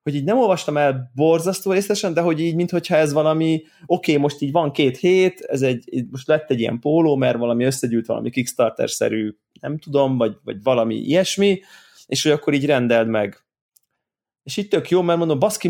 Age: 20-39